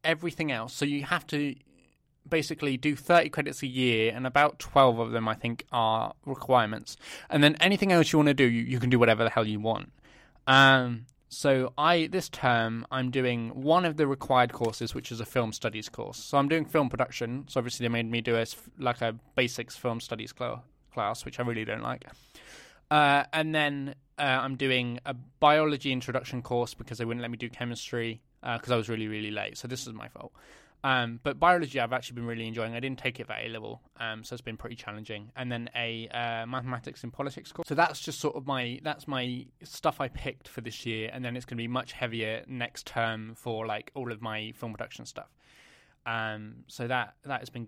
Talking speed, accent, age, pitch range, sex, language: 220 wpm, British, 20-39, 115-145 Hz, male, English